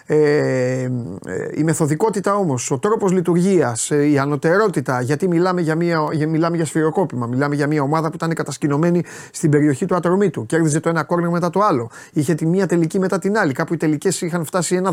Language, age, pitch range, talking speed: Greek, 30-49, 135-170 Hz, 195 wpm